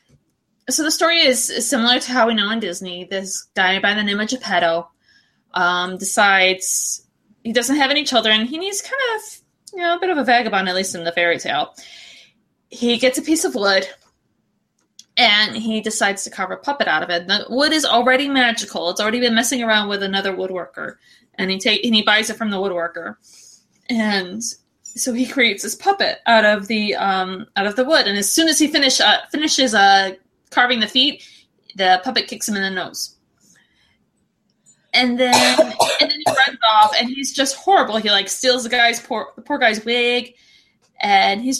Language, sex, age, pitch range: English, female, 20-39, 200-265 Hz